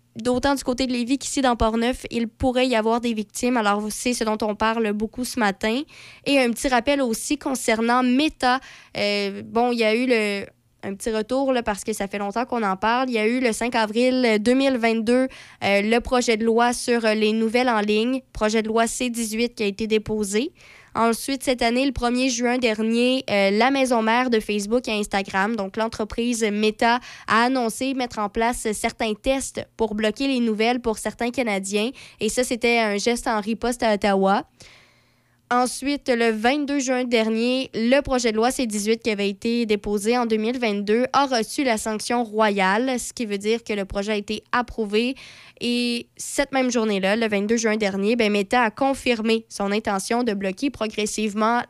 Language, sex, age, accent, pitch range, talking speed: French, female, 20-39, Canadian, 215-250 Hz, 190 wpm